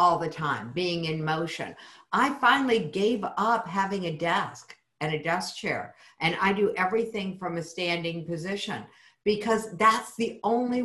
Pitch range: 155-210 Hz